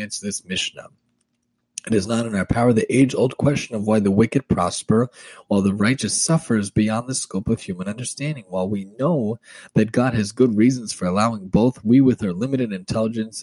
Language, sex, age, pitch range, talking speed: English, male, 30-49, 105-130 Hz, 195 wpm